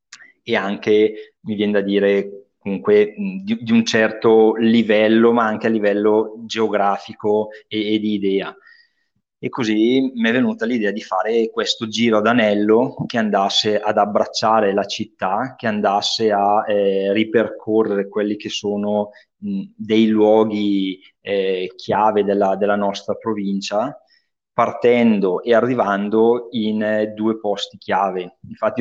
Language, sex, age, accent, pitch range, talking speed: Italian, male, 20-39, native, 100-110 Hz, 135 wpm